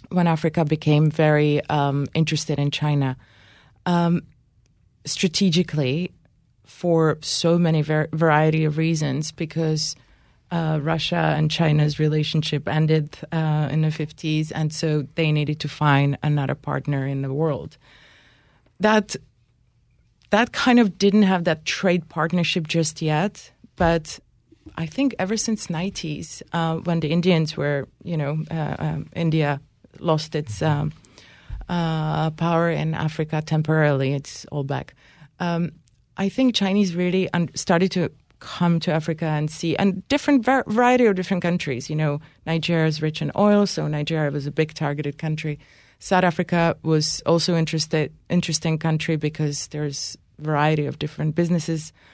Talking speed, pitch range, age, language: 145 wpm, 150-170 Hz, 30-49, English